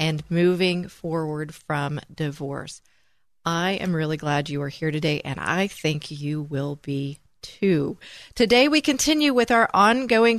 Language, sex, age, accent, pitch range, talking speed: English, female, 40-59, American, 155-215 Hz, 150 wpm